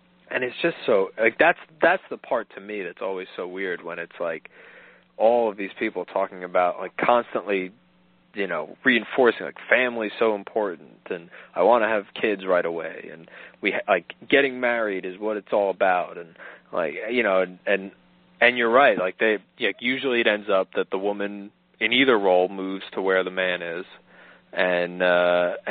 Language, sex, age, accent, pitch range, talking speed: English, male, 30-49, American, 85-105 Hz, 190 wpm